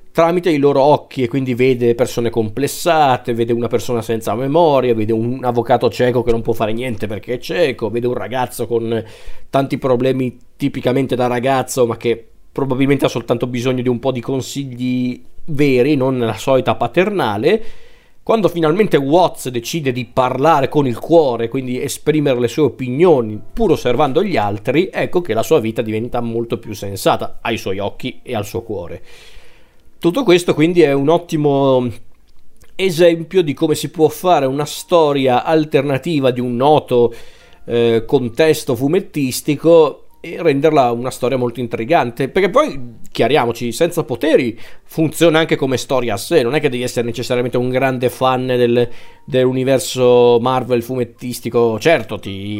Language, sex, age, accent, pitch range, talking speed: Italian, male, 40-59, native, 120-150 Hz, 155 wpm